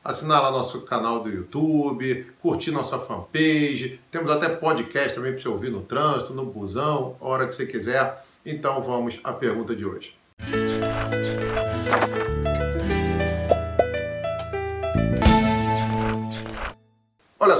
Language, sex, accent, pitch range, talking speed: Portuguese, male, Brazilian, 110-135 Hz, 110 wpm